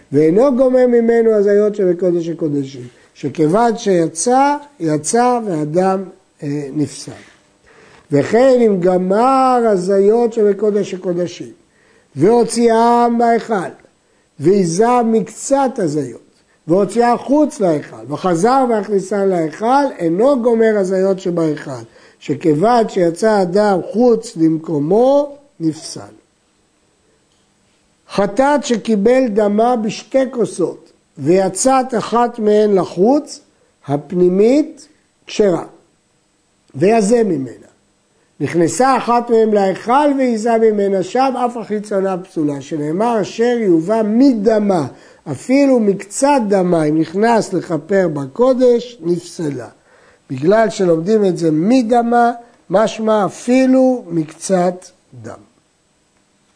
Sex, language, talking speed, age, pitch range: male, Hebrew, 90 wpm, 60-79, 170-240 Hz